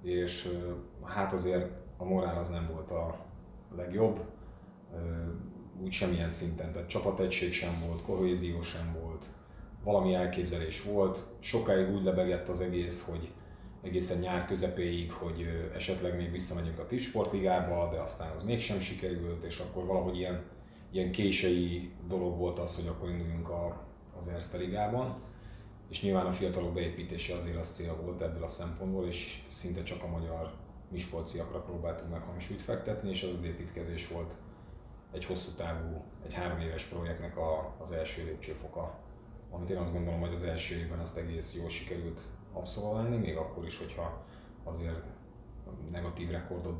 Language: Hungarian